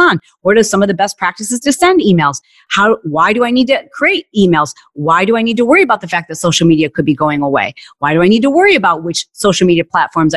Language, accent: English, American